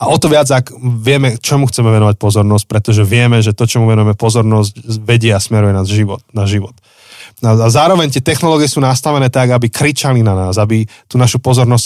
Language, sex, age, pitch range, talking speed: Slovak, male, 20-39, 105-125 Hz, 190 wpm